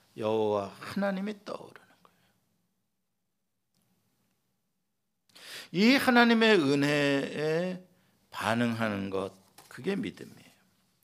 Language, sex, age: Korean, male, 50-69